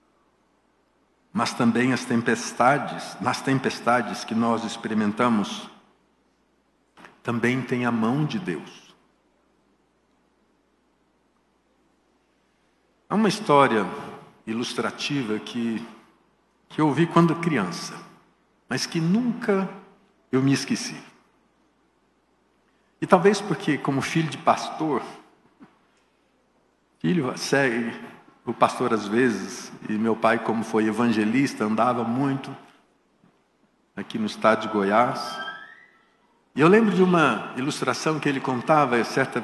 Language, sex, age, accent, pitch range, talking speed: Portuguese, male, 60-79, Brazilian, 120-170 Hz, 105 wpm